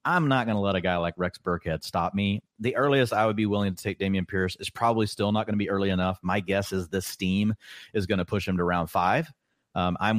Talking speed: 270 wpm